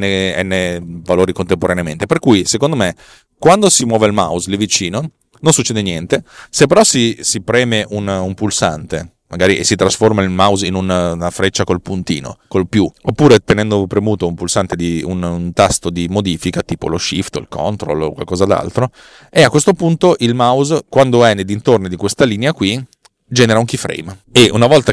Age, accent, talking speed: 30-49, native, 190 wpm